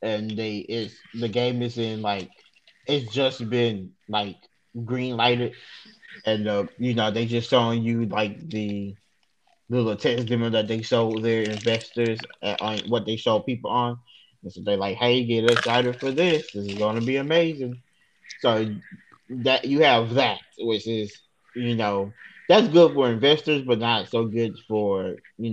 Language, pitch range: English, 105-125 Hz